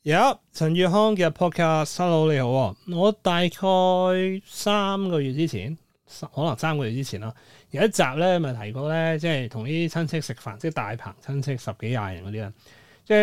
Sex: male